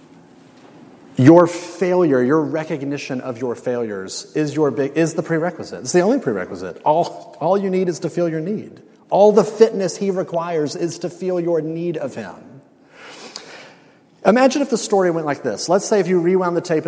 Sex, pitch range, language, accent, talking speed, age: male, 150-180 Hz, English, American, 185 wpm, 30-49